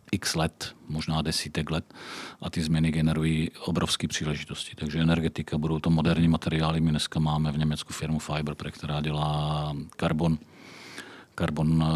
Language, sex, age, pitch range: Czech, male, 40-59, 75-80 Hz